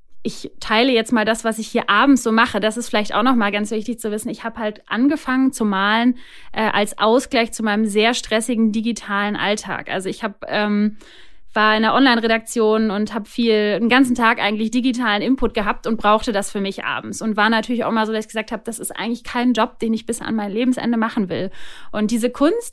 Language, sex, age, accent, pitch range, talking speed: German, female, 30-49, German, 210-245 Hz, 225 wpm